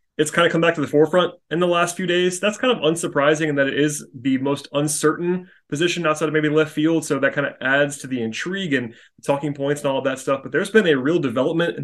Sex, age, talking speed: male, 30-49, 270 wpm